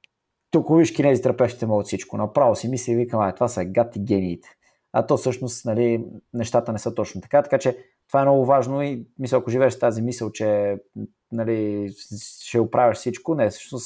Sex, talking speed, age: male, 185 wpm, 20-39